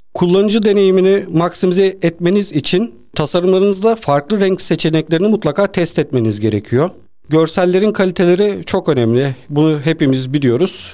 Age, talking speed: 40-59, 110 wpm